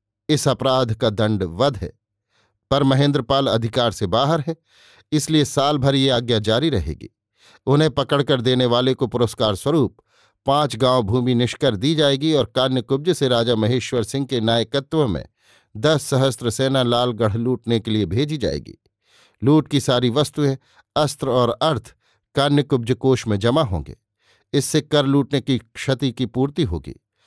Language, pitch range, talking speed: Hindi, 115-140 Hz, 155 wpm